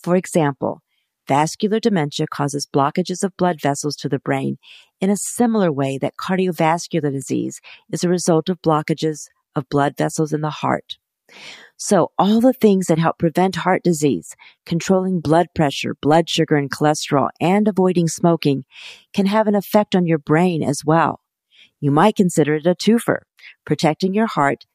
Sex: female